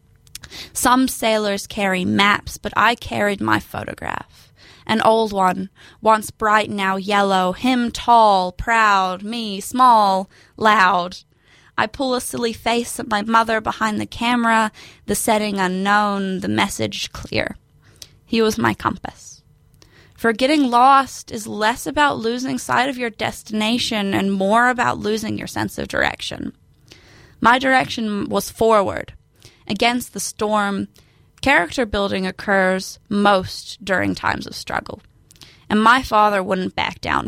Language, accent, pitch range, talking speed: English, American, 195-235 Hz, 135 wpm